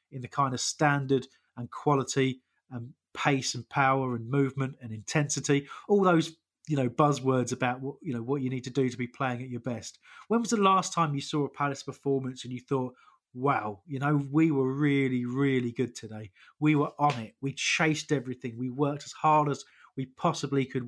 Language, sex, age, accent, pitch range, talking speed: English, male, 30-49, British, 125-155 Hz, 205 wpm